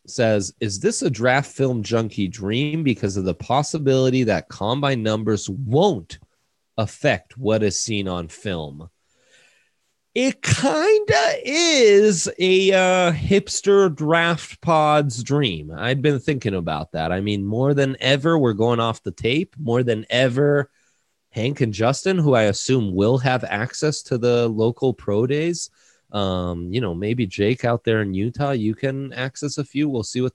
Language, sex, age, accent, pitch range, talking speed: English, male, 30-49, American, 115-155 Hz, 160 wpm